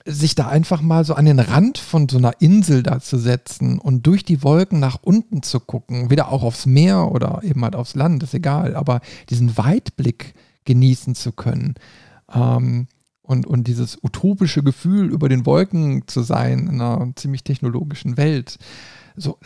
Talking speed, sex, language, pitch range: 175 wpm, male, German, 125-155 Hz